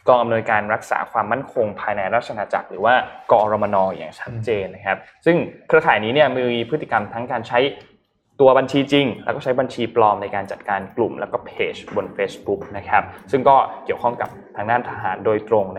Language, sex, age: Thai, male, 20-39